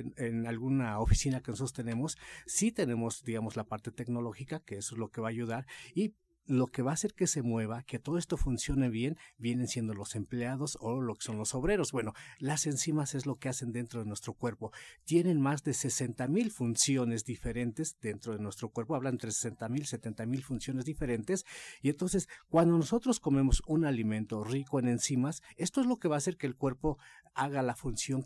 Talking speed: 210 wpm